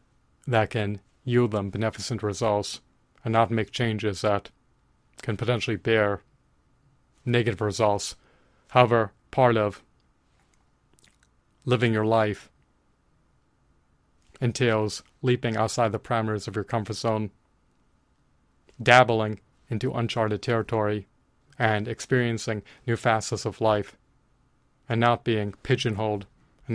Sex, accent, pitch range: male, American, 105-120 Hz